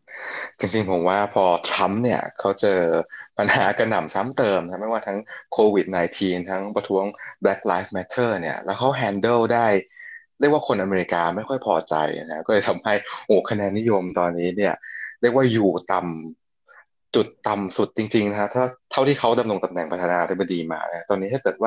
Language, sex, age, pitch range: Thai, male, 20-39, 90-120 Hz